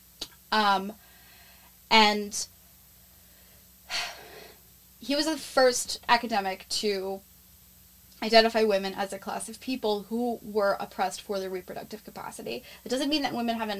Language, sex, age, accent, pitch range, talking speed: English, female, 10-29, American, 205-245 Hz, 120 wpm